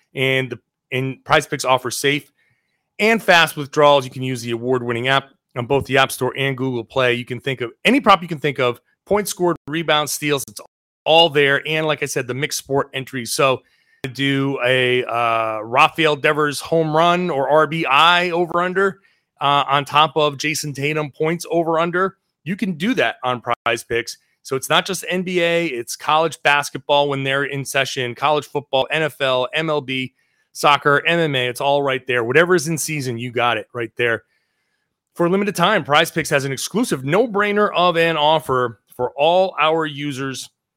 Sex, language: male, English